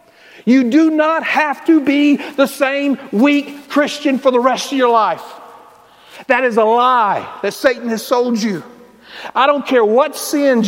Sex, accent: male, American